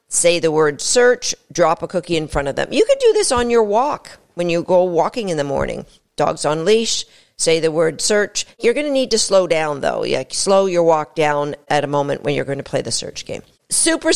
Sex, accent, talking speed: female, American, 235 wpm